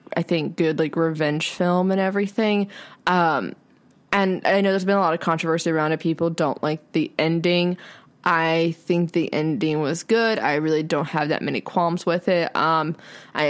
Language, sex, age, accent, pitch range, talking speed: English, female, 20-39, American, 165-195 Hz, 185 wpm